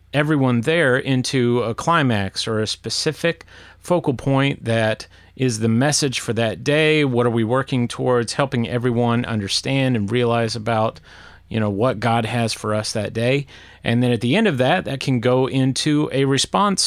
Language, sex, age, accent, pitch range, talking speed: English, male, 30-49, American, 115-145 Hz, 180 wpm